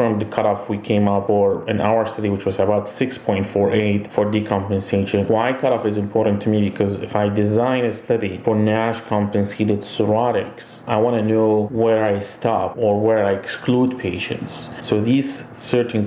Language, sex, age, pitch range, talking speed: English, male, 30-49, 100-115 Hz, 170 wpm